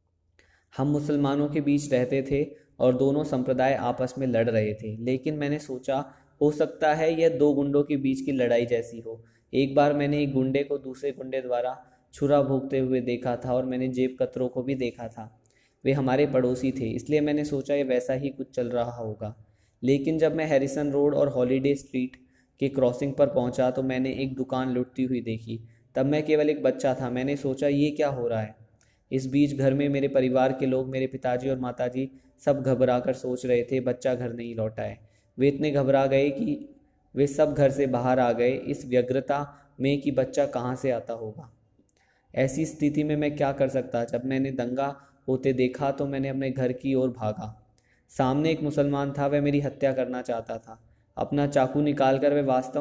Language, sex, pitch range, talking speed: Hindi, male, 125-140 Hz, 200 wpm